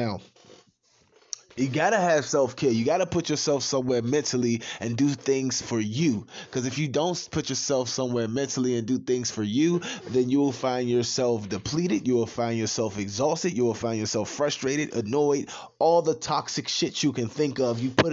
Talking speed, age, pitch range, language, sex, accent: 190 wpm, 20-39, 110-135 Hz, English, male, American